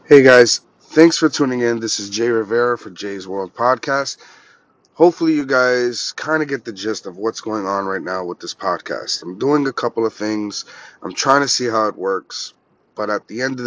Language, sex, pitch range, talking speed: English, male, 110-130 Hz, 215 wpm